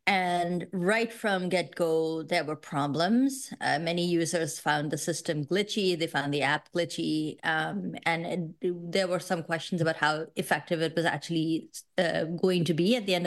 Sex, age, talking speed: female, 30-49, 175 wpm